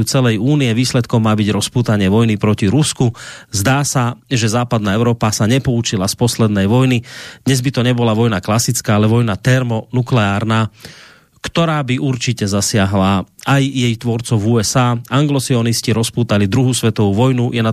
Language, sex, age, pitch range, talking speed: Slovak, male, 30-49, 110-130 Hz, 145 wpm